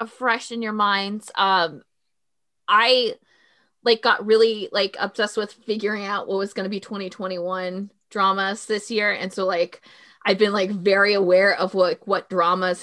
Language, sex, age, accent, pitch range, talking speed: English, female, 20-39, American, 185-230 Hz, 165 wpm